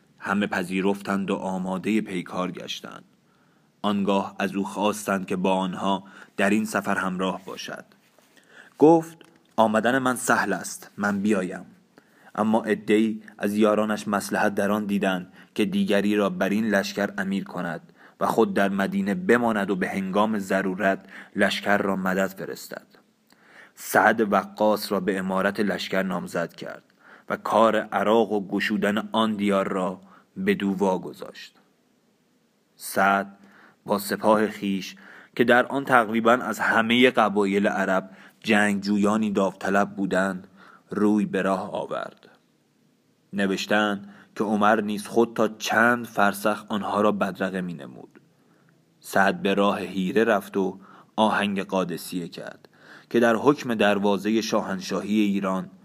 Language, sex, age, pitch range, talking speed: Persian, male, 30-49, 95-105 Hz, 130 wpm